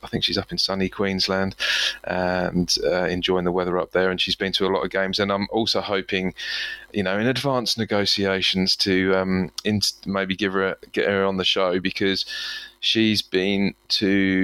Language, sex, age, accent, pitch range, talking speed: English, male, 20-39, British, 90-100 Hz, 195 wpm